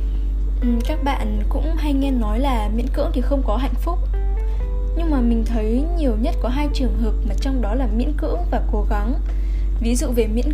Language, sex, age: Vietnamese, female, 10-29